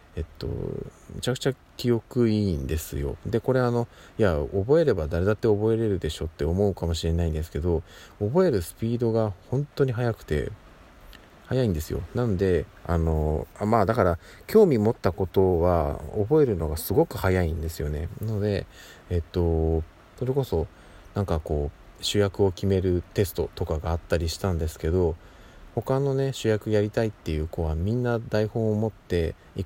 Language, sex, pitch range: Japanese, male, 80-110 Hz